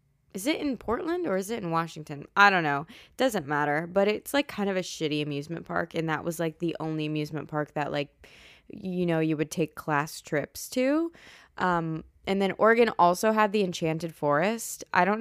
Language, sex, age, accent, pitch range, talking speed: English, female, 20-39, American, 165-230 Hz, 210 wpm